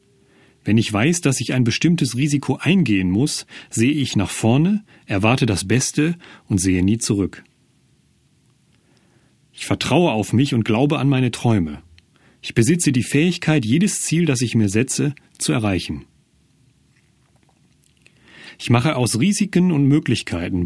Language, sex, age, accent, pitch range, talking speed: German, male, 40-59, German, 105-150 Hz, 140 wpm